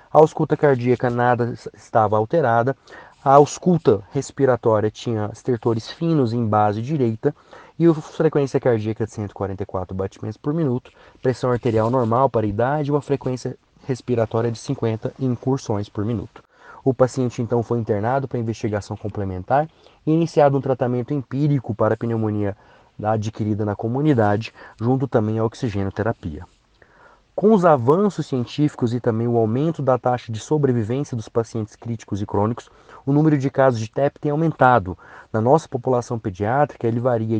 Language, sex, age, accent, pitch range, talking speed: Portuguese, male, 30-49, Brazilian, 110-140 Hz, 150 wpm